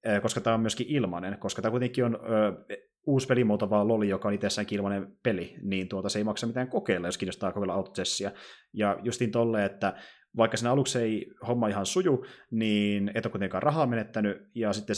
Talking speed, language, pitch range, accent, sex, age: 190 wpm, Finnish, 95-115 Hz, native, male, 20-39